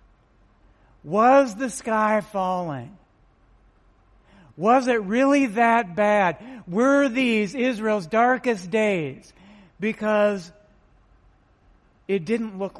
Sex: male